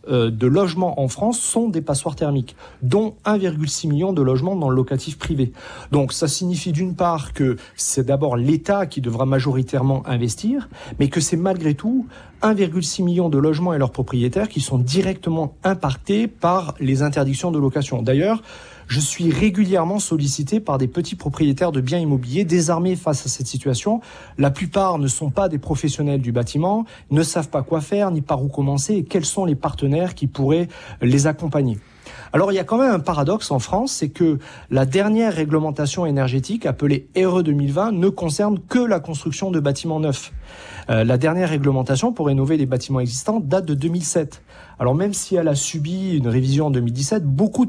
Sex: male